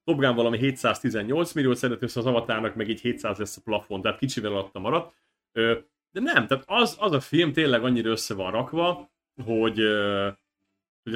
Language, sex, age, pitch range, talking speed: Hungarian, male, 30-49, 110-160 Hz, 165 wpm